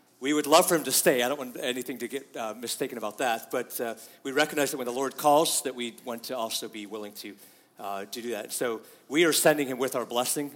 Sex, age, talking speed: male, 30-49, 260 wpm